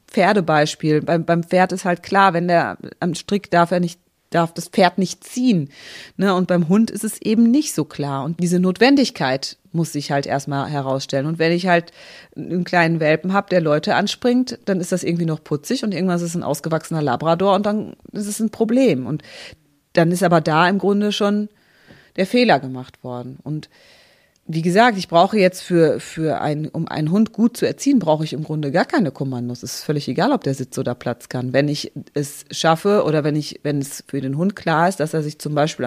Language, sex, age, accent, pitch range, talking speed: German, female, 30-49, German, 145-185 Hz, 215 wpm